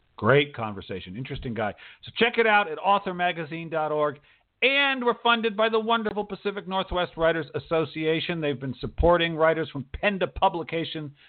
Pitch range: 140-190 Hz